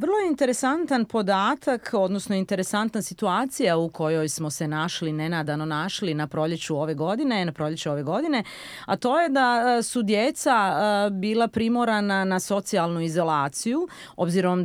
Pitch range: 170-230 Hz